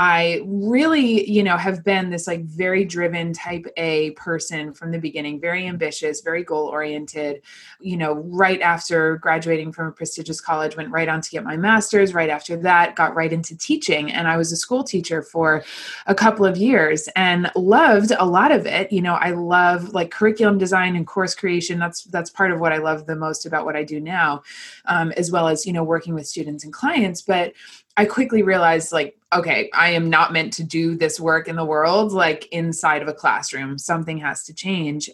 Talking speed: 210 wpm